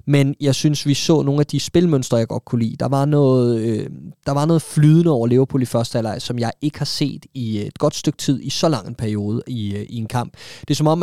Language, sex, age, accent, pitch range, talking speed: Danish, male, 20-39, native, 125-160 Hz, 265 wpm